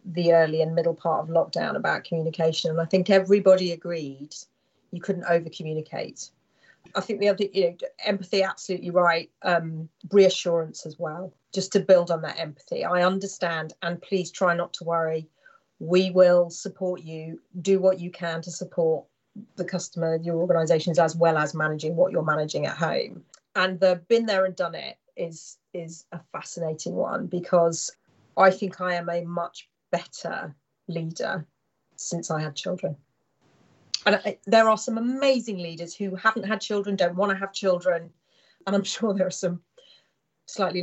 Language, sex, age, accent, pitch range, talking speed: English, female, 40-59, British, 165-195 Hz, 170 wpm